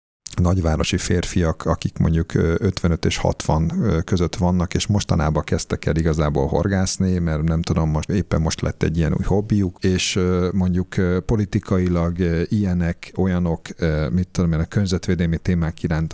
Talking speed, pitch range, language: 140 wpm, 80-95 Hz, Hungarian